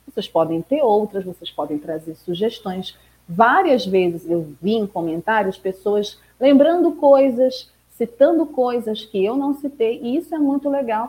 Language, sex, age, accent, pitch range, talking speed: Portuguese, female, 40-59, Brazilian, 175-230 Hz, 150 wpm